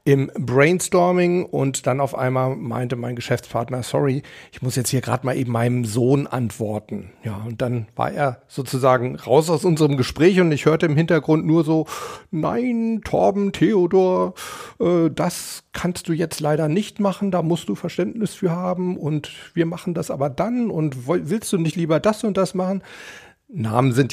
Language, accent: German, German